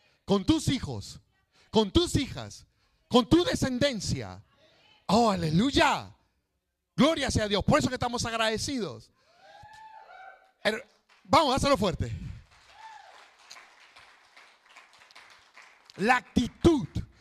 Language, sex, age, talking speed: Spanish, male, 50-69, 90 wpm